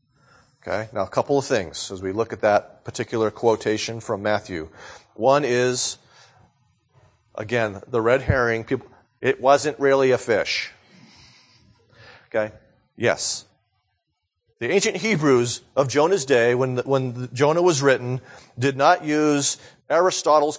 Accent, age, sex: American, 40-59, male